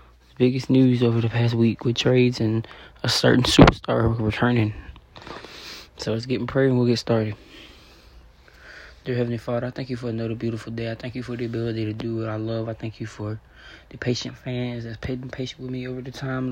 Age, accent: 20-39, American